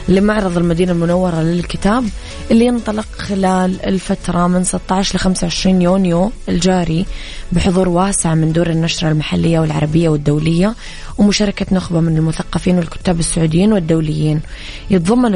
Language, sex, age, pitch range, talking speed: Arabic, female, 20-39, 165-190 Hz, 115 wpm